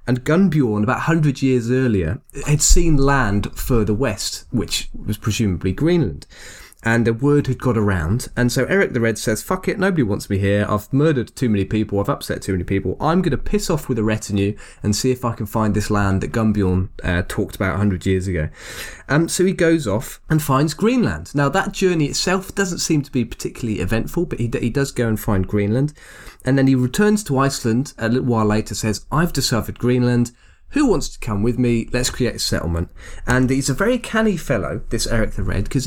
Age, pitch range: 20-39, 105-155 Hz